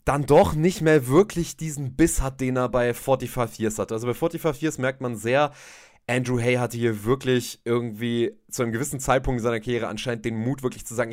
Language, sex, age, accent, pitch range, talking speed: German, male, 30-49, German, 115-150 Hz, 215 wpm